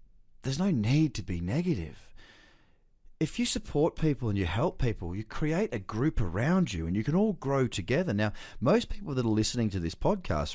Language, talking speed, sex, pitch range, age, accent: English, 200 wpm, male, 90-125 Hz, 30-49, Australian